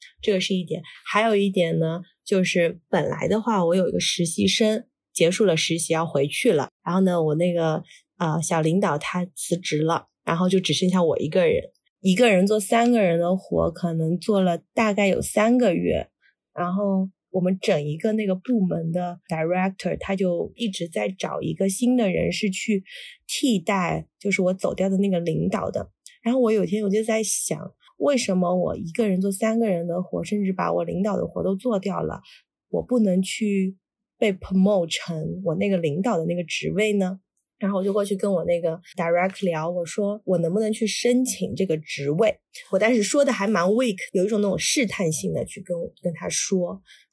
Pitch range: 175-215 Hz